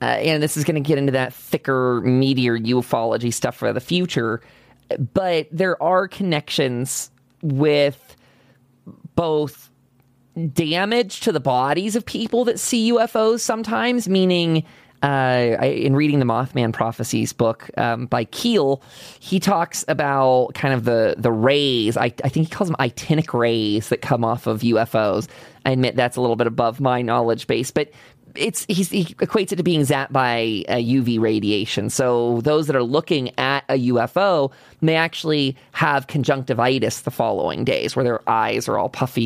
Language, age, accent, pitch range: English, 20-39, American, 125-165 Hz